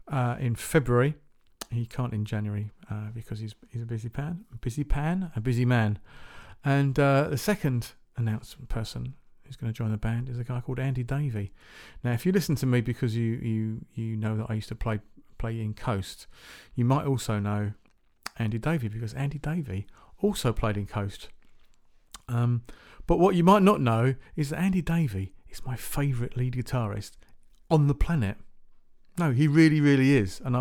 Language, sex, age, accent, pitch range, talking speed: English, male, 40-59, British, 115-150 Hz, 185 wpm